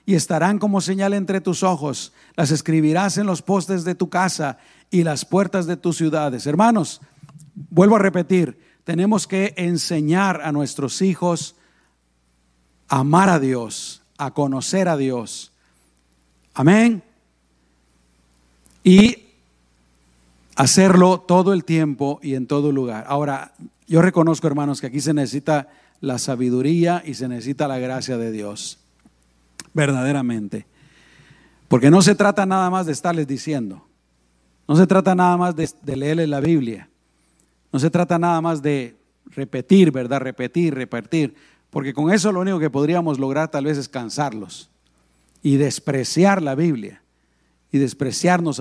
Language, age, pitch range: Spanish, 50-69, 125-175 Hz